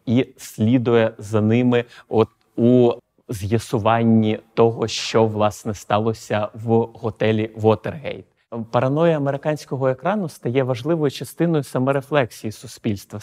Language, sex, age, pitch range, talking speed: Ukrainian, male, 30-49, 115-135 Hz, 100 wpm